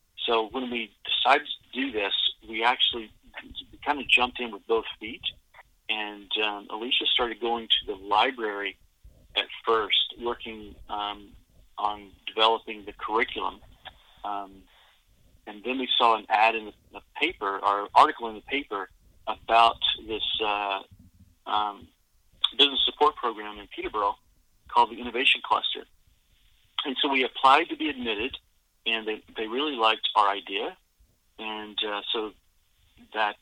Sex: male